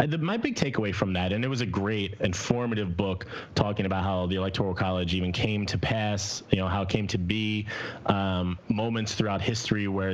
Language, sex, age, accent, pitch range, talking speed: English, male, 30-49, American, 95-115 Hz, 200 wpm